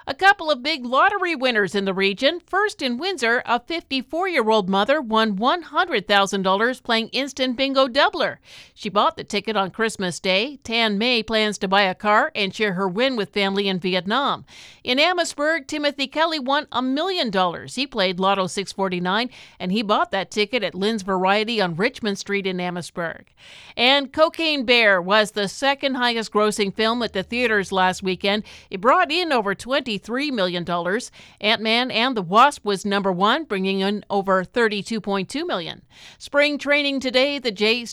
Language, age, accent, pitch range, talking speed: English, 50-69, American, 195-265 Hz, 170 wpm